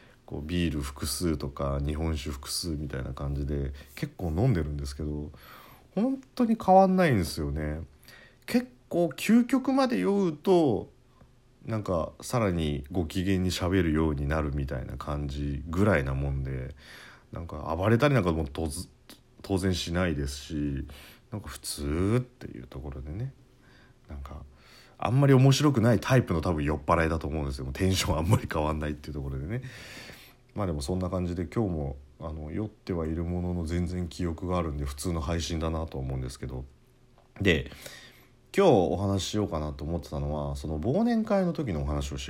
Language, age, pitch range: Japanese, 40-59, 75-115 Hz